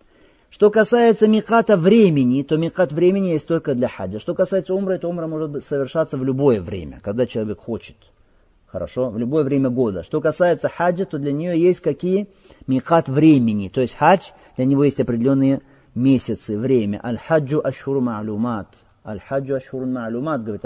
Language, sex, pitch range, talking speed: Russian, male, 110-155 Hz, 155 wpm